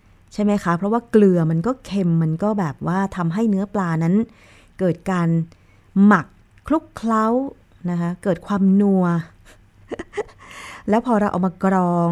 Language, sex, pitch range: Thai, female, 160-200 Hz